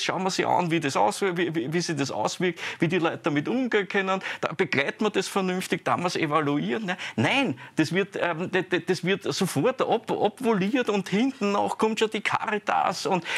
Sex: male